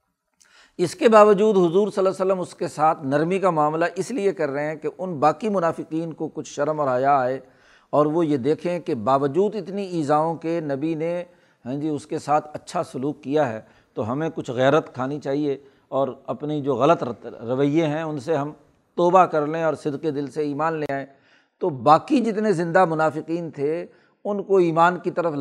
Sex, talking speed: male, 200 wpm